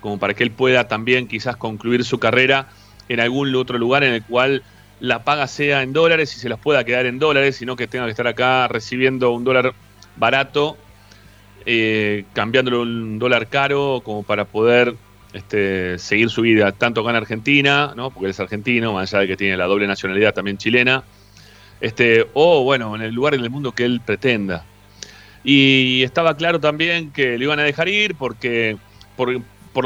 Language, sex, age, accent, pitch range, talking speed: Spanish, male, 30-49, Argentinian, 105-145 Hz, 185 wpm